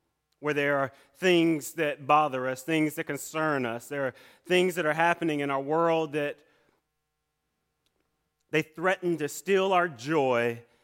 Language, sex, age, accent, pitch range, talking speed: English, male, 30-49, American, 135-160 Hz, 150 wpm